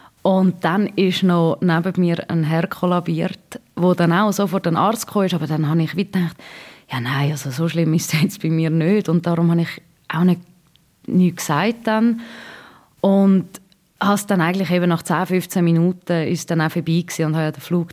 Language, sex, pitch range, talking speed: German, female, 160-210 Hz, 190 wpm